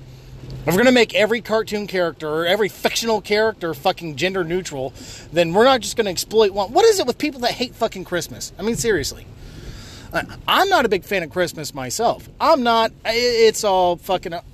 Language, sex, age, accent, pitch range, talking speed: English, male, 30-49, American, 145-220 Hz, 200 wpm